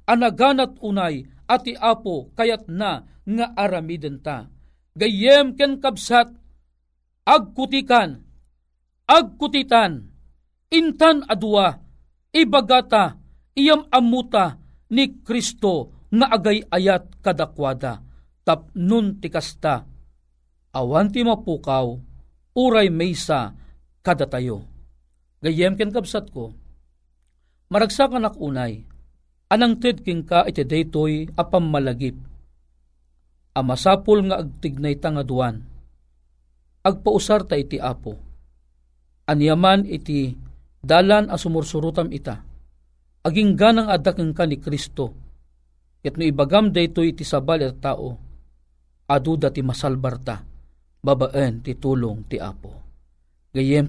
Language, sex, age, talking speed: Filipino, male, 50-69, 90 wpm